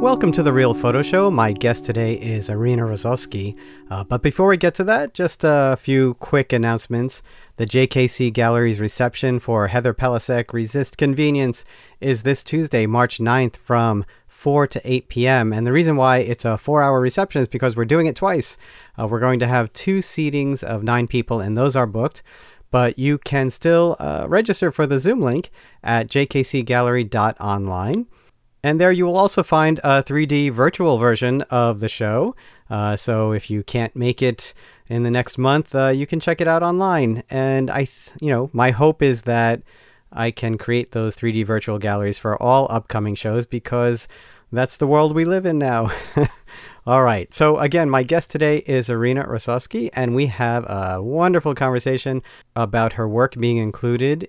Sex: male